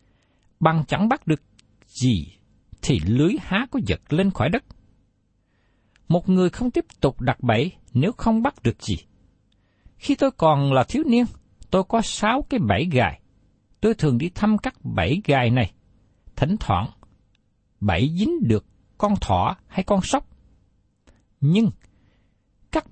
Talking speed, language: 150 wpm, Vietnamese